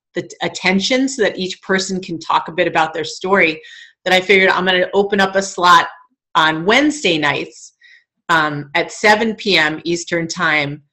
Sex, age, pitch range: female, 30-49, 175-225 Hz